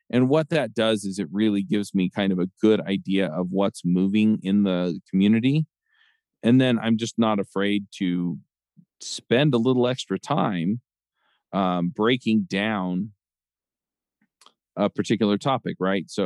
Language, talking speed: English, 150 wpm